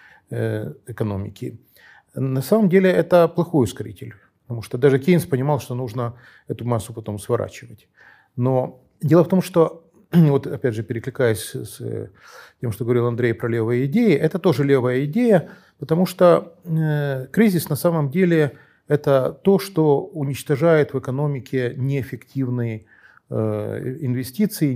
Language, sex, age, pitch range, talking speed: Ukrainian, male, 40-59, 120-165 Hz, 130 wpm